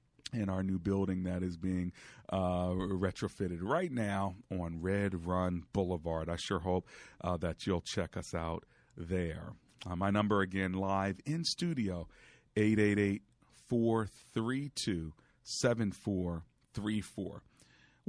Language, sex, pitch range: English, male, 95-140 Hz